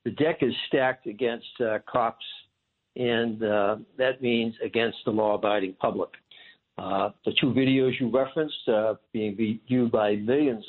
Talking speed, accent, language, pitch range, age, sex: 145 wpm, American, English, 105-130 Hz, 60-79, male